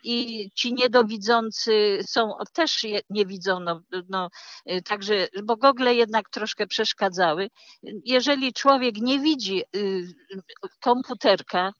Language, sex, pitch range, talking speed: Polish, female, 175-220 Hz, 115 wpm